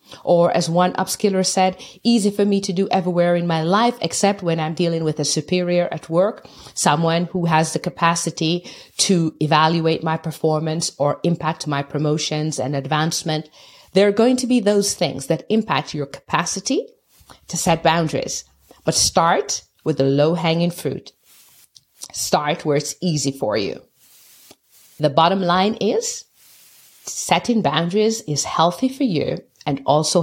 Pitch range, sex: 150-195 Hz, female